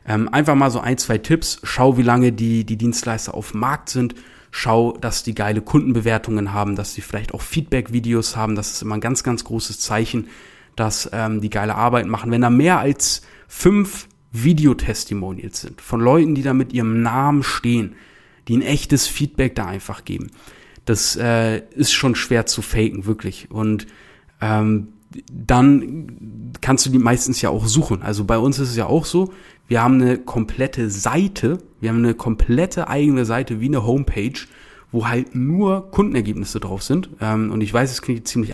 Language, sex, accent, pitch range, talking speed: German, male, German, 110-130 Hz, 180 wpm